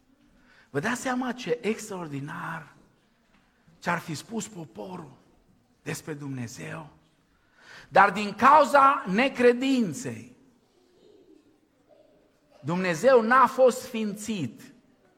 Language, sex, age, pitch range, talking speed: Romanian, male, 50-69, 155-230 Hz, 75 wpm